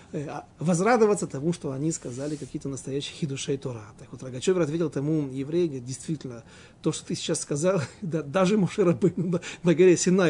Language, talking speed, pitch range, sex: Russian, 155 wpm, 130-175 Hz, male